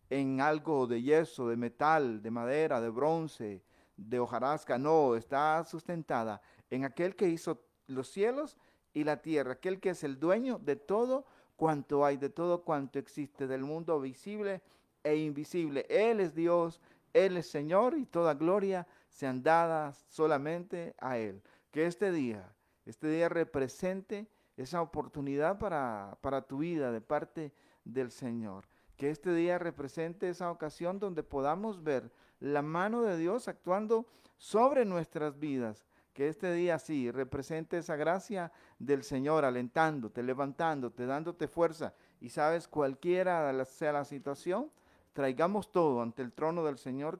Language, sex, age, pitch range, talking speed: Spanish, male, 50-69, 135-175 Hz, 145 wpm